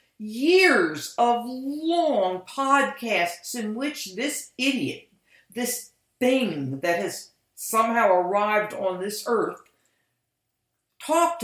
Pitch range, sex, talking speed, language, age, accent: 165-240 Hz, female, 95 wpm, English, 60-79, American